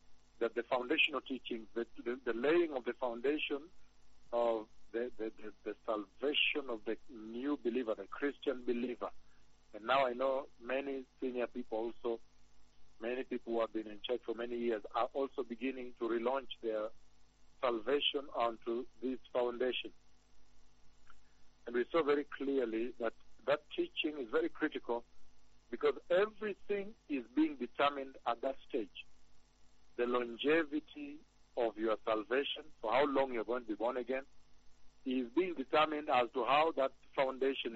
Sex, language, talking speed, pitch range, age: male, English, 145 wpm, 110-140 Hz, 60-79